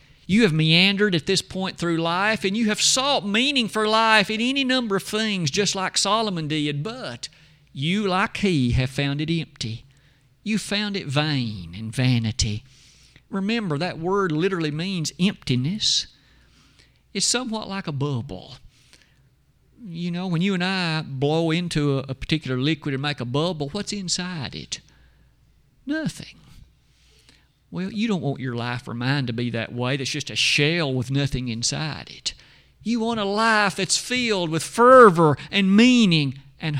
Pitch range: 135-195 Hz